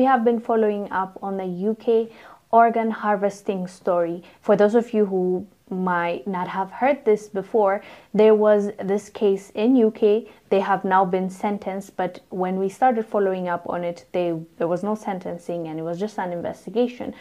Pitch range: 185-220 Hz